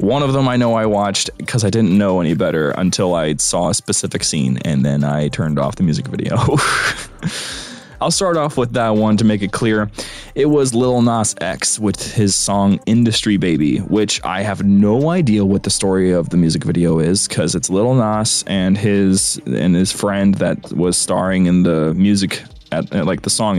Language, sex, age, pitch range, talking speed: English, male, 20-39, 95-120 Hz, 200 wpm